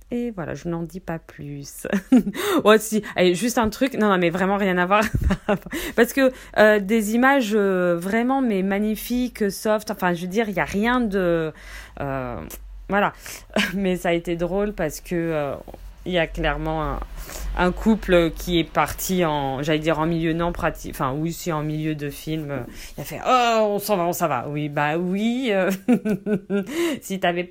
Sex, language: female, French